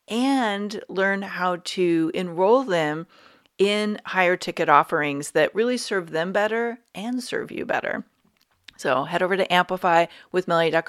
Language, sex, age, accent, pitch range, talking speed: English, female, 40-59, American, 170-220 Hz, 140 wpm